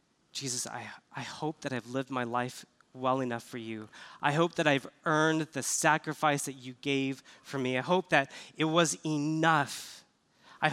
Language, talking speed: English, 180 wpm